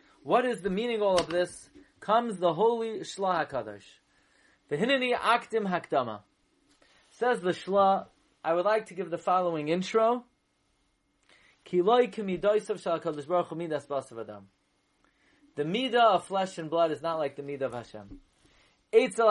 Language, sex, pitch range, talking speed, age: English, male, 170-220 Hz, 150 wpm, 30-49